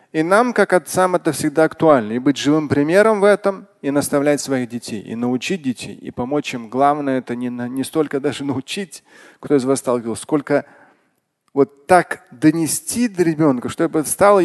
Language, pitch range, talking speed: Russian, 130-170 Hz, 175 wpm